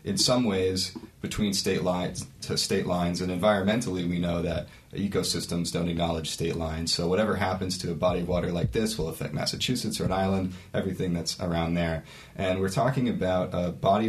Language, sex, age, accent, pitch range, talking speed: English, male, 30-49, American, 85-105 Hz, 190 wpm